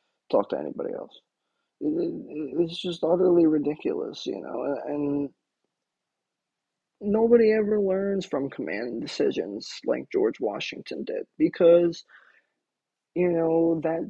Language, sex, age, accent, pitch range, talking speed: English, male, 30-49, American, 150-180 Hz, 105 wpm